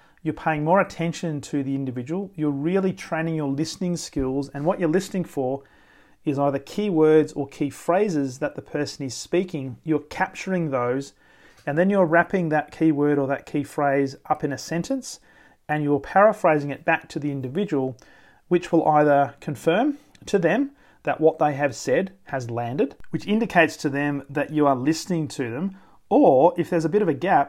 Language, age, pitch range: English, 30-49, 140-170 Hz